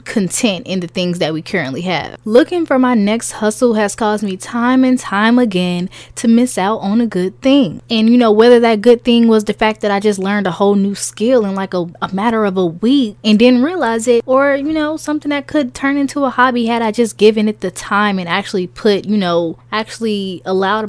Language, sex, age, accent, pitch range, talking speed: English, female, 10-29, American, 190-240 Hz, 235 wpm